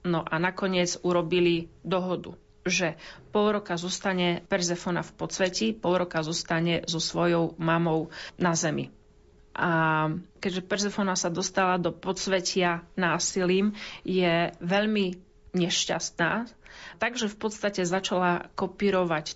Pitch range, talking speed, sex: 165-185 Hz, 110 wpm, female